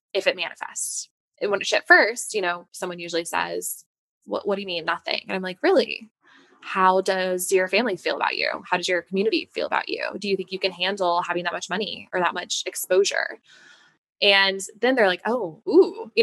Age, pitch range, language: 20-39, 180-215 Hz, English